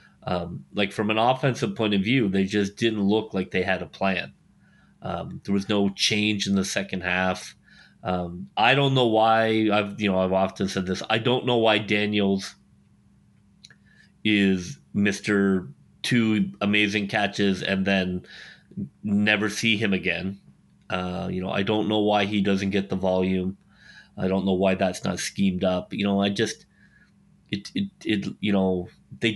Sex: male